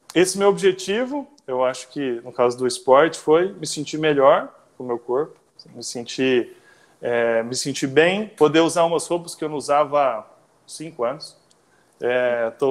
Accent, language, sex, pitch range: Brazilian, Portuguese, male, 135-185 Hz